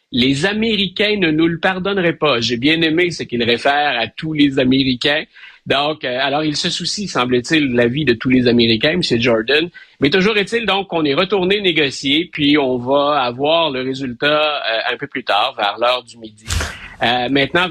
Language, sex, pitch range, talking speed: French, male, 125-170 Hz, 195 wpm